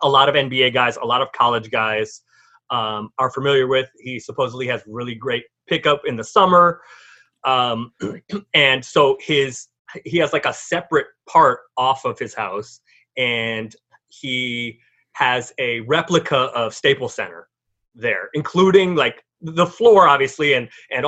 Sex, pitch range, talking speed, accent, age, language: male, 125-160 Hz, 150 wpm, American, 30-49, English